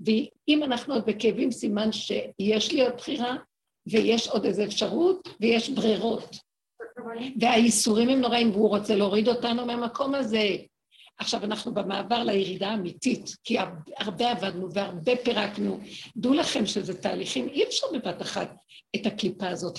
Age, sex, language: 60-79, female, Hebrew